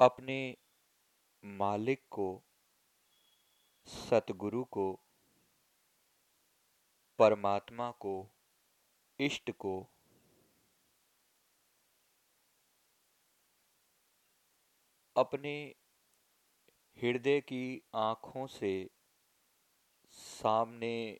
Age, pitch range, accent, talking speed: 50-69, 100-125 Hz, native, 40 wpm